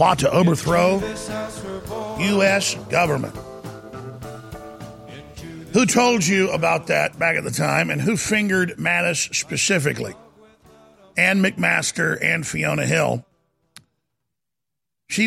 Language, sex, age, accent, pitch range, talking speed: English, male, 50-69, American, 140-195 Hz, 100 wpm